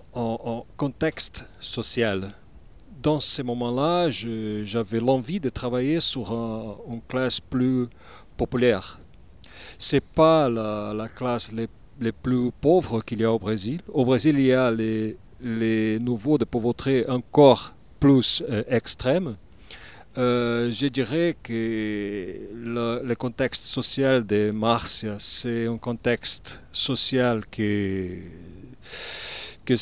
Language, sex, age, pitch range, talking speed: French, male, 50-69, 110-135 Hz, 125 wpm